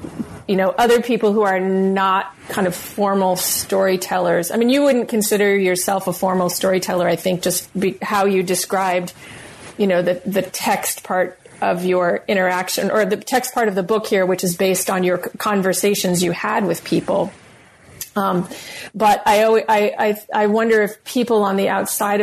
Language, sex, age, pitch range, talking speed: English, female, 30-49, 185-210 Hz, 180 wpm